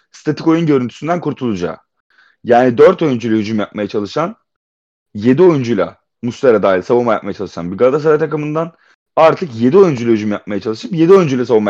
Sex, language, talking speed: male, Turkish, 150 wpm